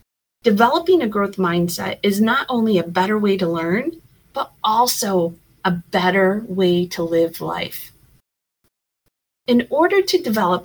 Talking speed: 135 wpm